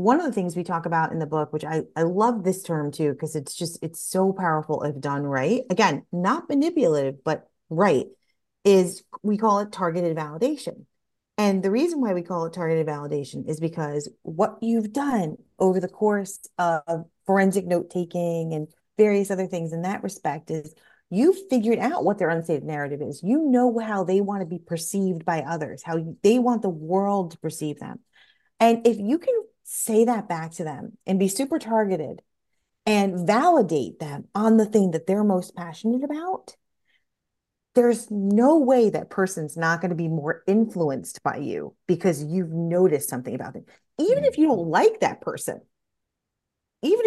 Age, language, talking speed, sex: 30-49, English, 180 wpm, female